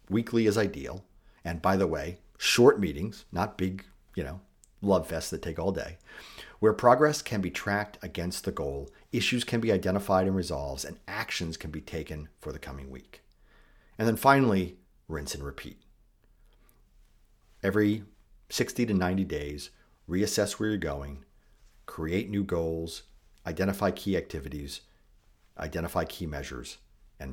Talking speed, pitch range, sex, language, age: 145 wpm, 80-105 Hz, male, English, 50-69